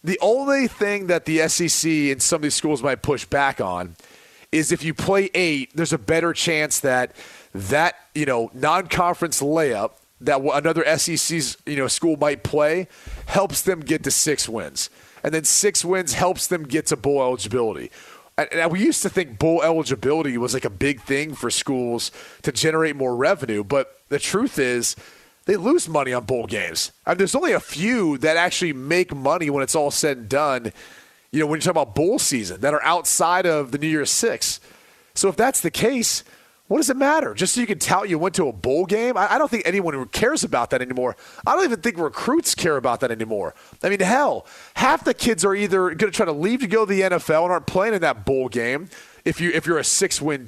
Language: English